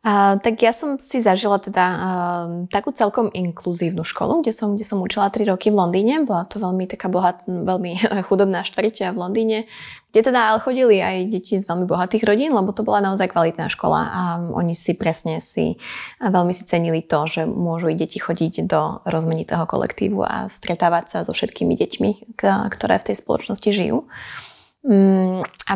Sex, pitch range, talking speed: female, 180-215 Hz, 175 wpm